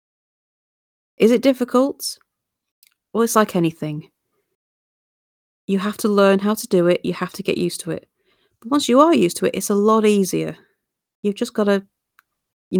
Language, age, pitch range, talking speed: English, 30-49, 175-205 Hz, 180 wpm